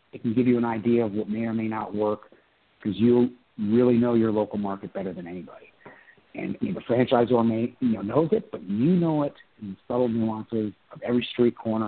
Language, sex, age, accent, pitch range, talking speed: English, male, 50-69, American, 105-130 Hz, 220 wpm